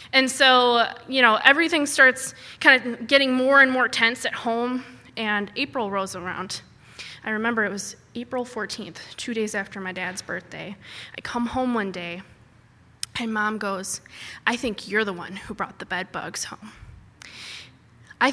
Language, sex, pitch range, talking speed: English, female, 195-245 Hz, 165 wpm